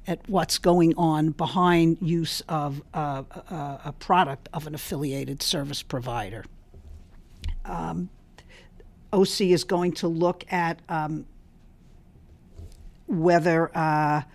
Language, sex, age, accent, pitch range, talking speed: English, female, 50-69, American, 135-170 Hz, 105 wpm